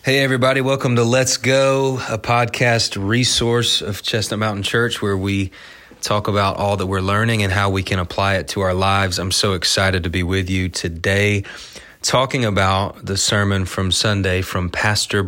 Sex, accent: male, American